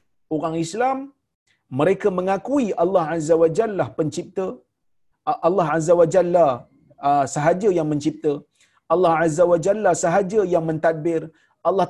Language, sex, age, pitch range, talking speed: Malayalam, male, 40-59, 145-190 Hz, 120 wpm